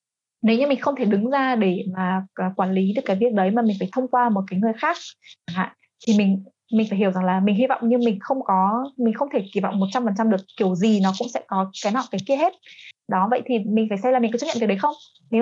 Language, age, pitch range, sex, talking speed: Vietnamese, 20-39, 190-245 Hz, female, 275 wpm